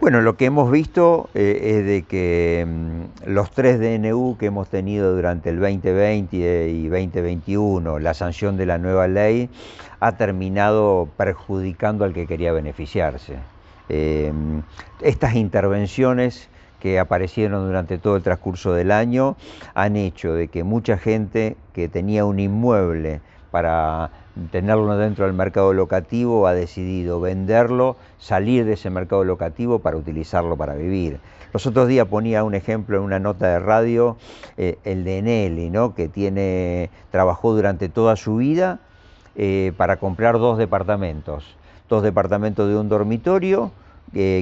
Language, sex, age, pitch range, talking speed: Spanish, male, 50-69, 90-110 Hz, 145 wpm